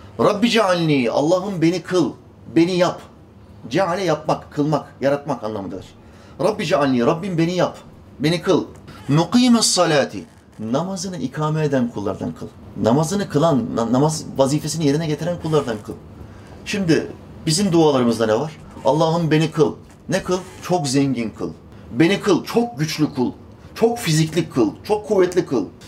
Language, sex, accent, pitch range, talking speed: Turkish, male, native, 115-165 Hz, 135 wpm